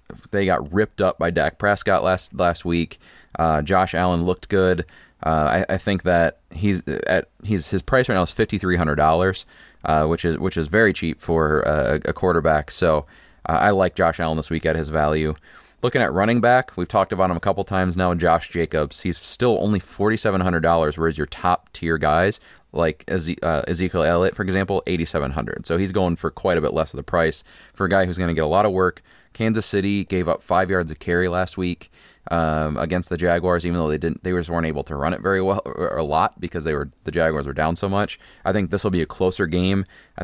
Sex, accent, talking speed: male, American, 235 wpm